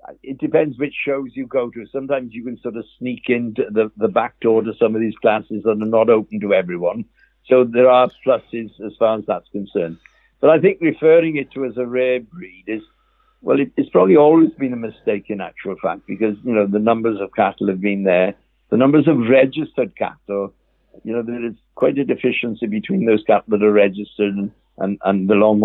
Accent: British